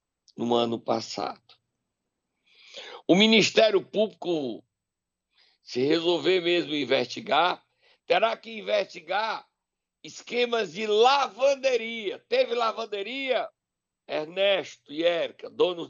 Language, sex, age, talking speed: Portuguese, male, 60-79, 85 wpm